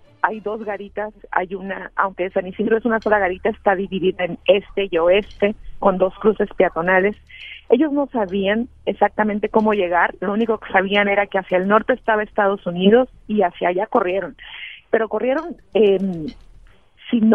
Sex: female